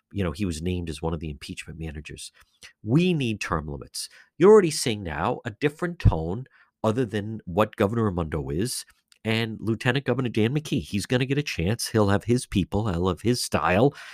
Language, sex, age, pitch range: English, male, 50-69, 90-130 Hz